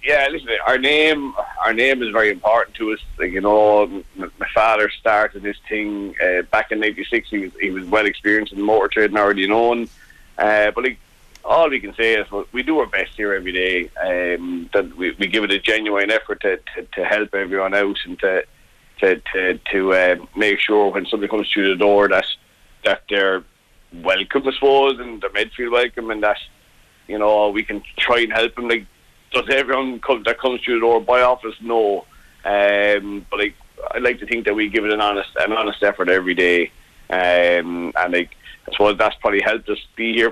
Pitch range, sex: 95-110 Hz, male